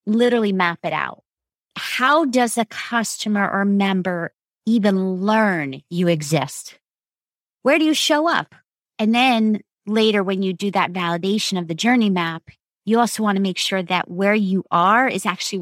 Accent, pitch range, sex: American, 190-225 Hz, female